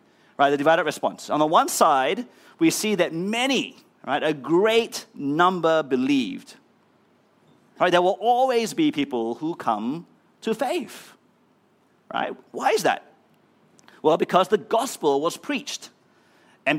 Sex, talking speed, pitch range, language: male, 135 wpm, 150-230 Hz, English